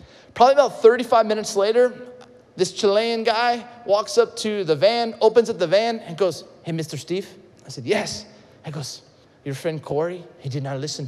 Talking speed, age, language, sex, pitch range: 185 wpm, 30-49, English, male, 145-215 Hz